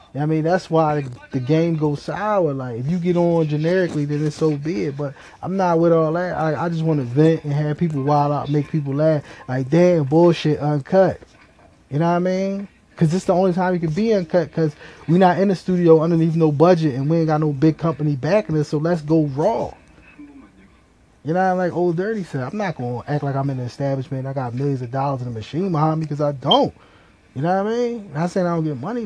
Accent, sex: American, male